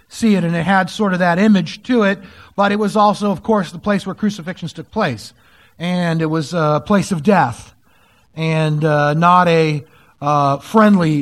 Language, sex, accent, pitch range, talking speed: English, male, American, 130-175 Hz, 195 wpm